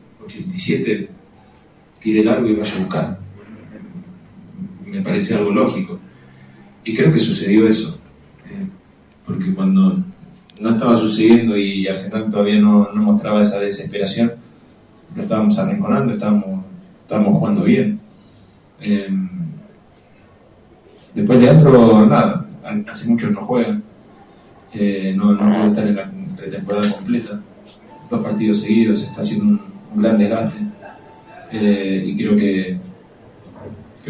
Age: 30-49